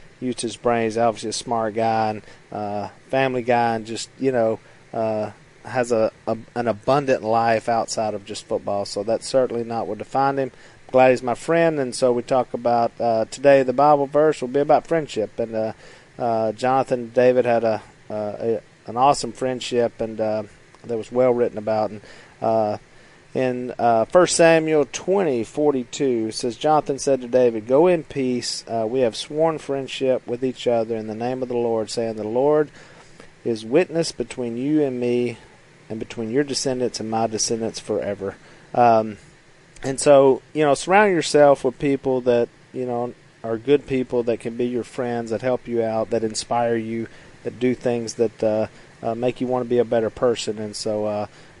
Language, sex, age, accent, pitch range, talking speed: English, male, 40-59, American, 110-135 Hz, 190 wpm